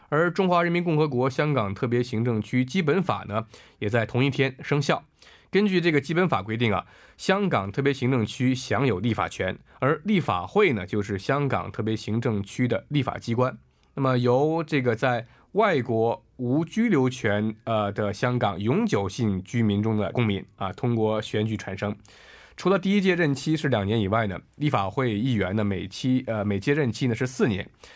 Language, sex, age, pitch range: Korean, male, 20-39, 105-145 Hz